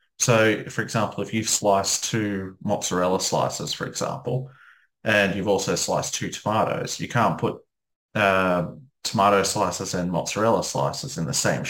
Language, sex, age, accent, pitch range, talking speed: English, male, 30-49, Australian, 95-115 Hz, 150 wpm